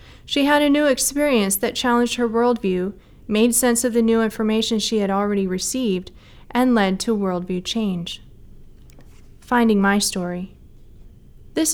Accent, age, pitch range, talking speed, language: American, 30-49, 195-240 Hz, 145 wpm, English